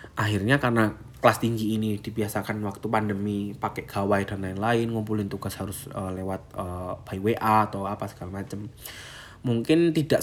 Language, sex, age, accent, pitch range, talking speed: Indonesian, male, 20-39, native, 100-120 Hz, 155 wpm